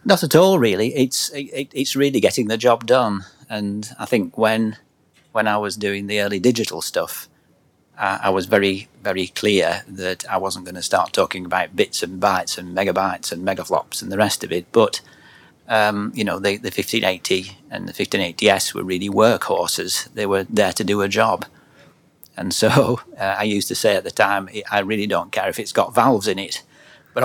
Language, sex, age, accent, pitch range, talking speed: English, male, 40-59, British, 95-110 Hz, 200 wpm